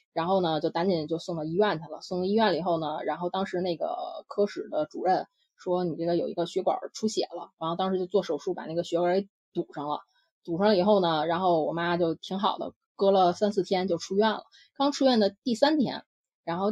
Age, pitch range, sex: 20-39, 175-245 Hz, female